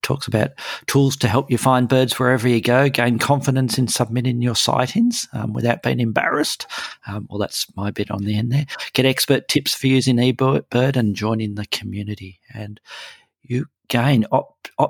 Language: English